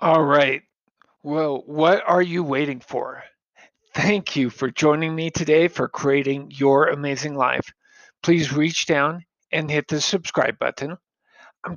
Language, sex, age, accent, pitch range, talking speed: English, male, 50-69, American, 140-180 Hz, 145 wpm